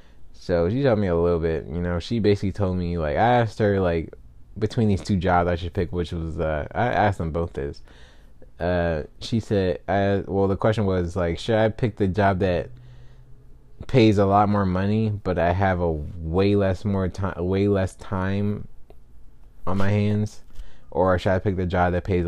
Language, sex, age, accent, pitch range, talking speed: English, male, 20-39, American, 80-100 Hz, 200 wpm